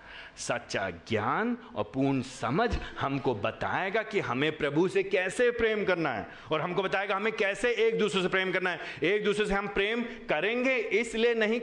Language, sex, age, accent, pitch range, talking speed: Hindi, male, 30-49, native, 210-255 Hz, 175 wpm